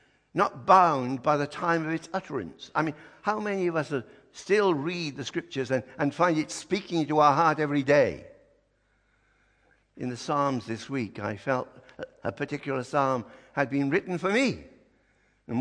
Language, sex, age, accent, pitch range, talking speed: English, male, 60-79, British, 120-160 Hz, 175 wpm